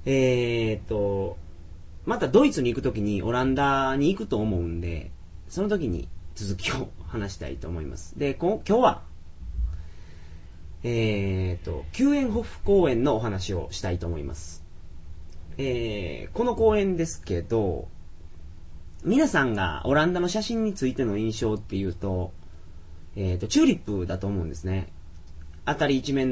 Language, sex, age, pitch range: Japanese, male, 30-49, 85-135 Hz